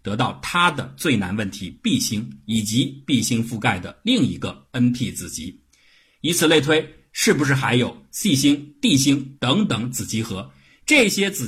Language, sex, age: Chinese, male, 50-69